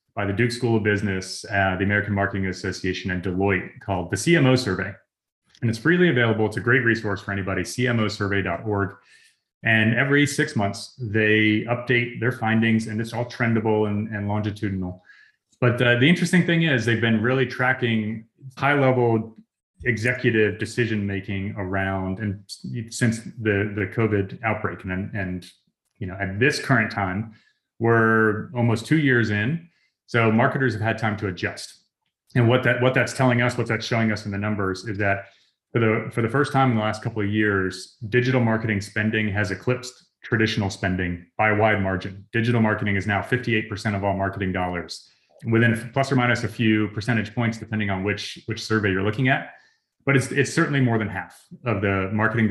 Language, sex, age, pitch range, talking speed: English, male, 30-49, 100-120 Hz, 180 wpm